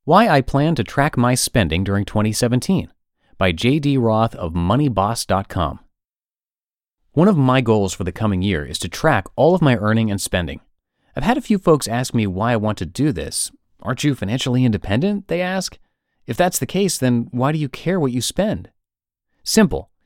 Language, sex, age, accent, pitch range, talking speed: English, male, 30-49, American, 95-135 Hz, 190 wpm